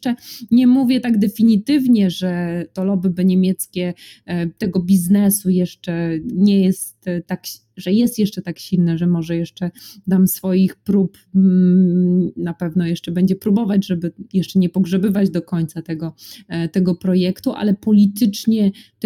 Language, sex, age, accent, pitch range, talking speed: Polish, female, 20-39, native, 175-215 Hz, 130 wpm